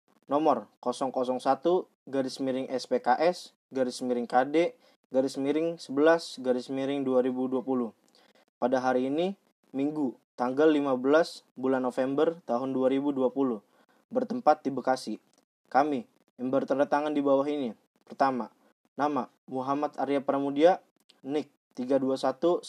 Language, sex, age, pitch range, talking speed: Indonesian, male, 20-39, 130-165 Hz, 110 wpm